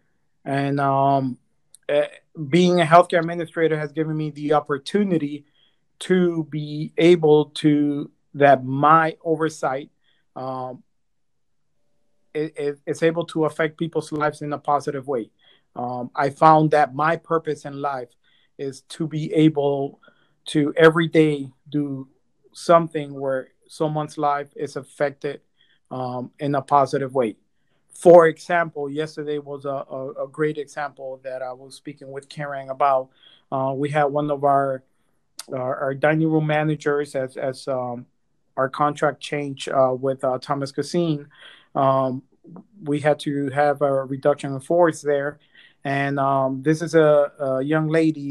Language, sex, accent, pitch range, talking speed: English, male, American, 140-155 Hz, 140 wpm